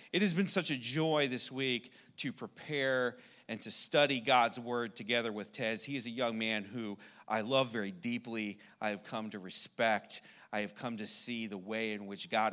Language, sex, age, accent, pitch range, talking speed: English, male, 40-59, American, 105-130 Hz, 205 wpm